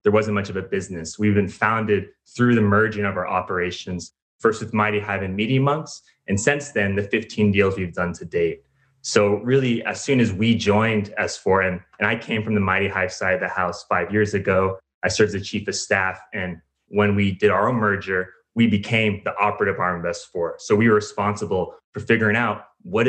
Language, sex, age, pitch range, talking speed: English, male, 20-39, 95-110 Hz, 220 wpm